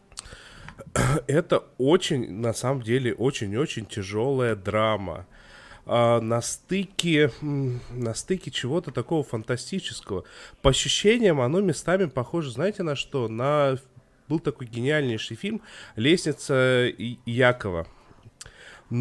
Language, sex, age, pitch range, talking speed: Russian, male, 20-39, 120-160 Hz, 105 wpm